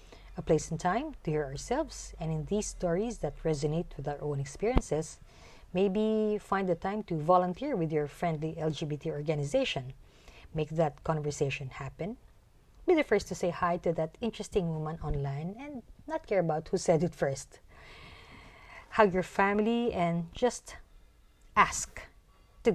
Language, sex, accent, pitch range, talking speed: English, female, Filipino, 145-205 Hz, 155 wpm